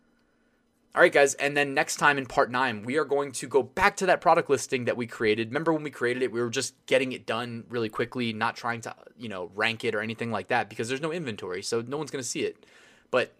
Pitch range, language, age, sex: 115-140 Hz, English, 20-39, male